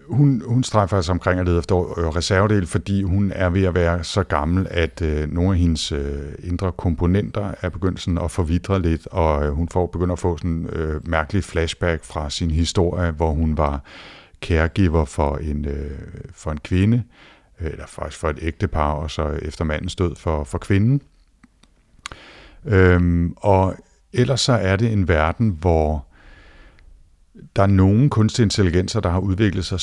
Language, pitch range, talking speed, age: Danish, 80-100 Hz, 175 wpm, 50-69